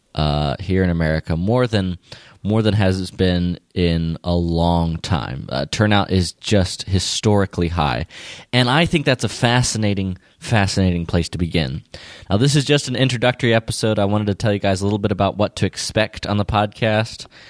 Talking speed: 185 wpm